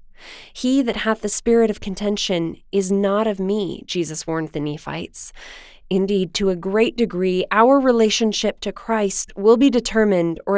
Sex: female